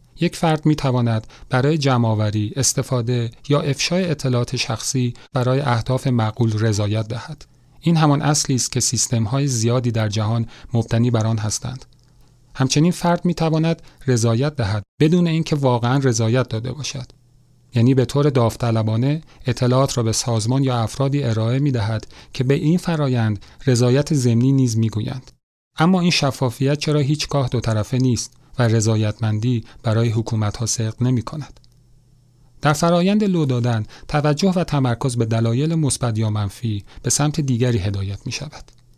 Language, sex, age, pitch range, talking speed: Persian, male, 40-59, 115-140 Hz, 150 wpm